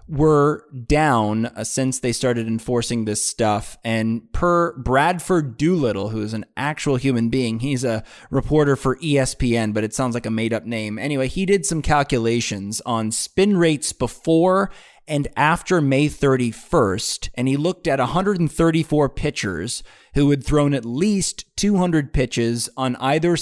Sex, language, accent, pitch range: male, English, American, 115-160 Hz